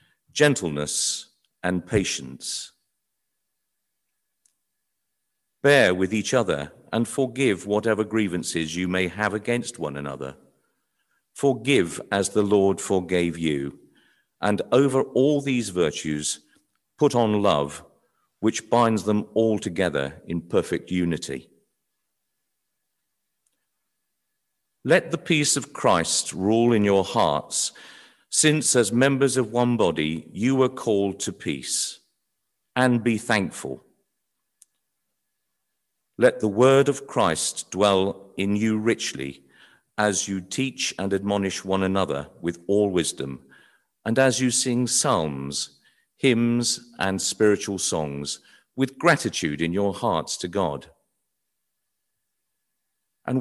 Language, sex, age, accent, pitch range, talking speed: English, male, 50-69, British, 85-120 Hz, 110 wpm